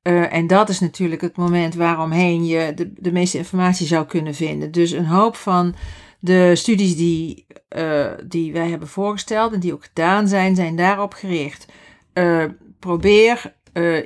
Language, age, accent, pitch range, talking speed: Dutch, 50-69, Dutch, 170-190 Hz, 160 wpm